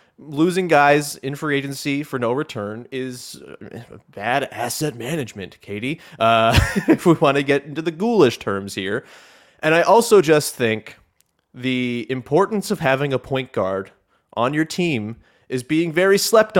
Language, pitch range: English, 130-175 Hz